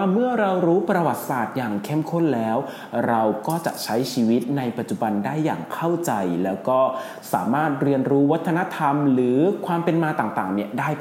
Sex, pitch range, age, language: male, 120-170 Hz, 20-39, Thai